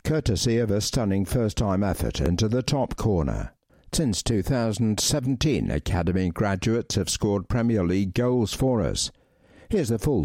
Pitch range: 90-120 Hz